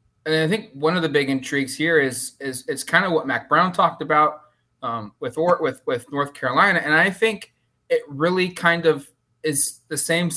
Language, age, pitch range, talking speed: English, 20-39, 125-160 Hz, 215 wpm